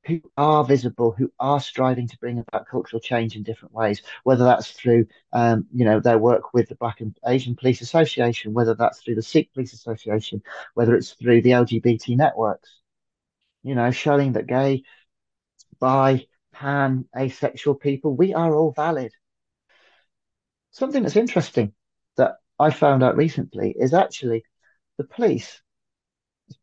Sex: male